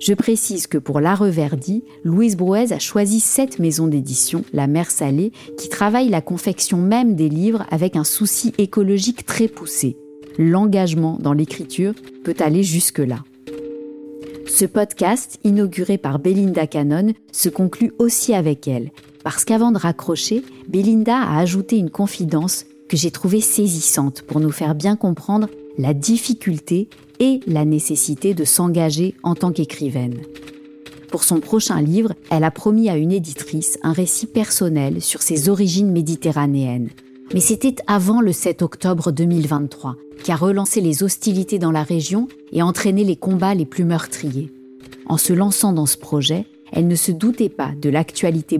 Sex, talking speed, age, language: female, 155 wpm, 40-59, French